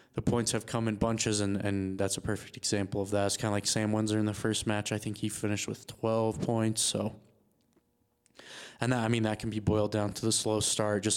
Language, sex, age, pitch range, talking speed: English, male, 20-39, 100-115 Hz, 245 wpm